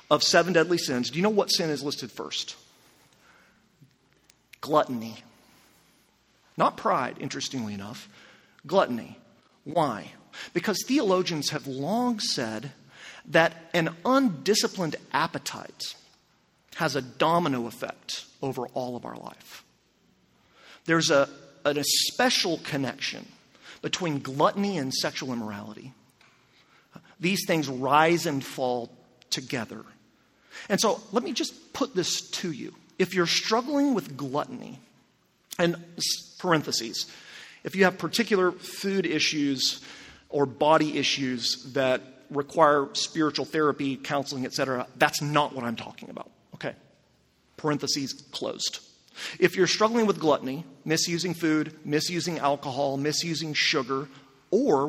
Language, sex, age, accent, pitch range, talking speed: English, male, 40-59, American, 135-180 Hz, 120 wpm